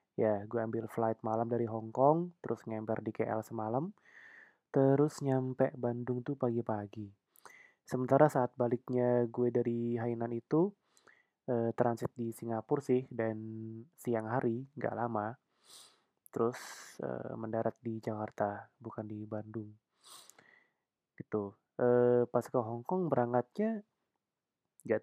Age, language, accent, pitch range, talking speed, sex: 20-39, Indonesian, native, 115-145 Hz, 120 wpm, male